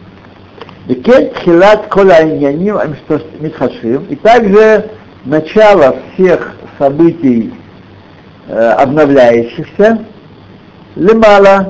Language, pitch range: Russian, 120-190 Hz